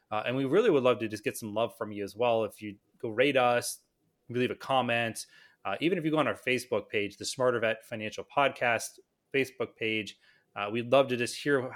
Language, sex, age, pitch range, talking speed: English, male, 30-49, 105-135 Hz, 230 wpm